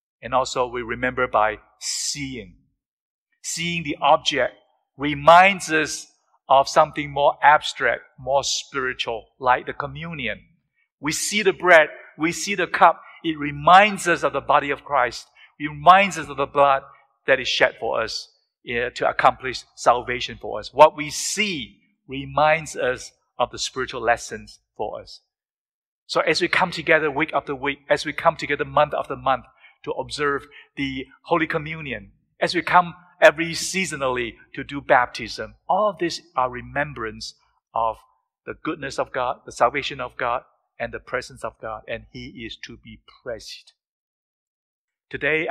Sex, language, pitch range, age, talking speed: male, English, 130-165 Hz, 50-69, 155 wpm